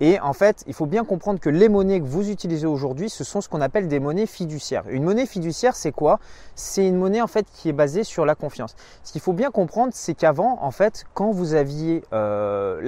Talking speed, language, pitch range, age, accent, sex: 240 wpm, French, 155-220 Hz, 20-39, French, male